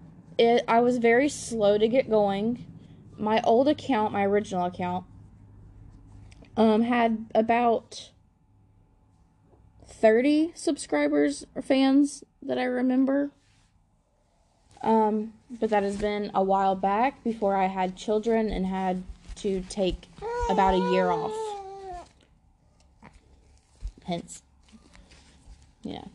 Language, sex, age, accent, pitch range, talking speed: English, female, 20-39, American, 185-230 Hz, 105 wpm